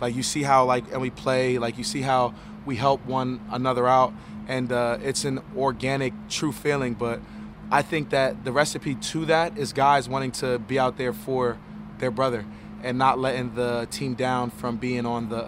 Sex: male